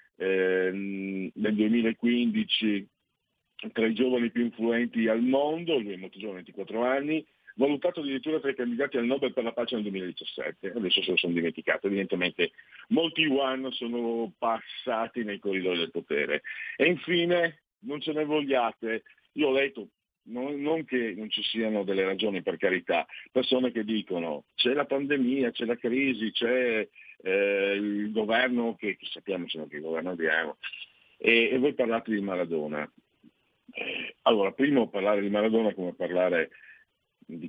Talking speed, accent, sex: 155 wpm, native, male